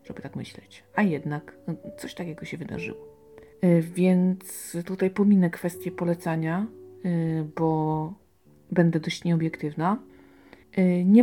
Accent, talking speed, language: native, 100 wpm, Polish